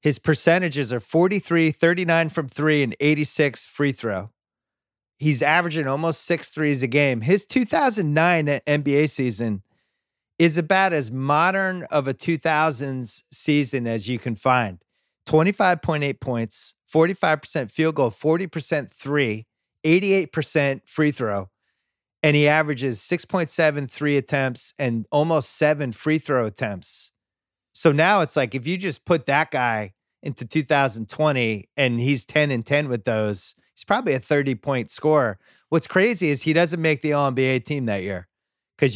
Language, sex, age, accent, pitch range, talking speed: English, male, 30-49, American, 120-155 Hz, 140 wpm